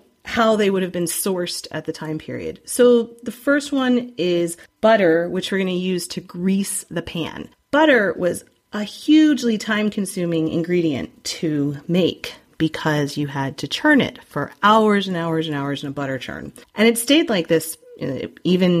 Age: 30-49